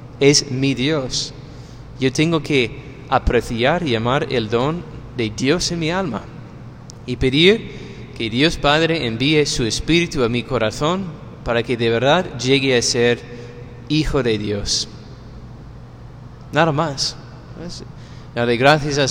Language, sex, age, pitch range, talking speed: Spanish, male, 30-49, 120-165 Hz, 130 wpm